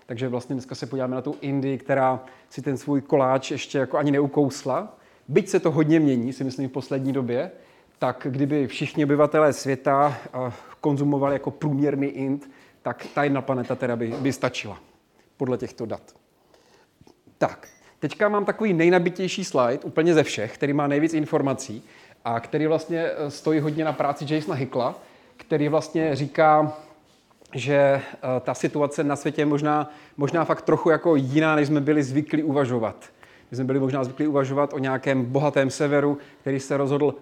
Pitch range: 135-155 Hz